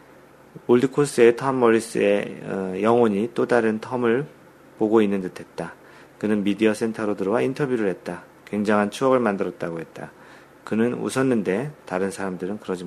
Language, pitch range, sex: Korean, 95-120 Hz, male